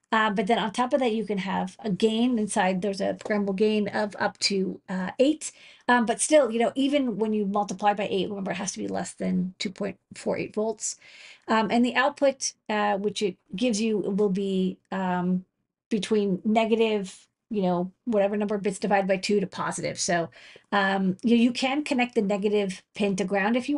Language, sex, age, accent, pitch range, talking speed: English, female, 30-49, American, 190-230 Hz, 205 wpm